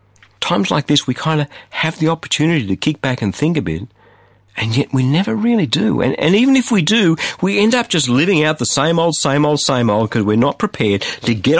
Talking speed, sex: 245 wpm, male